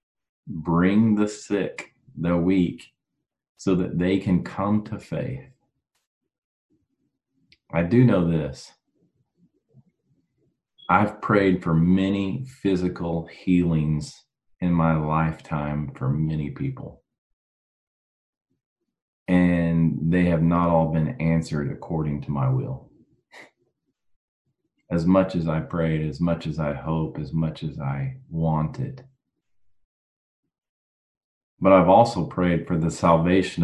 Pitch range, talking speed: 80-100 Hz, 110 wpm